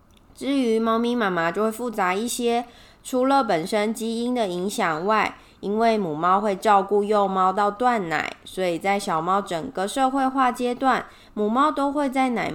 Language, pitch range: Chinese, 185-235 Hz